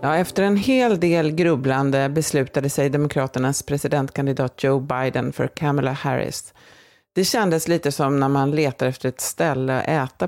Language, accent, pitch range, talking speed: Swedish, native, 135-170 Hz, 160 wpm